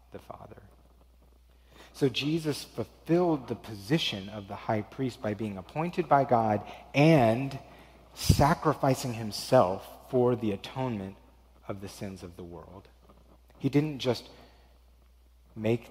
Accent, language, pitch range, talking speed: American, English, 90-115 Hz, 120 wpm